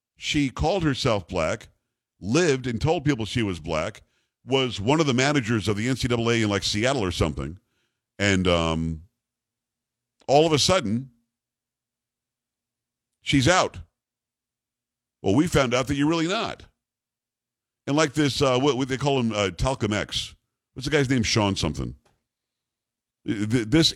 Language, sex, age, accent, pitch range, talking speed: English, male, 50-69, American, 105-130 Hz, 150 wpm